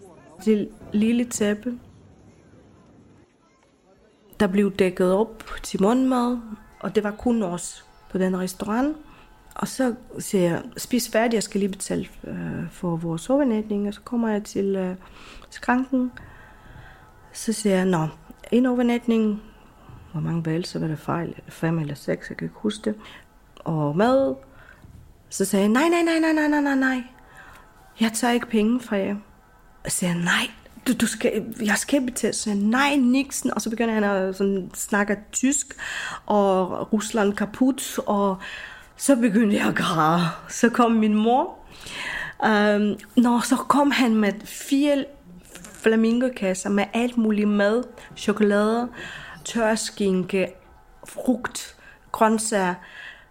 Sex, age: female, 30-49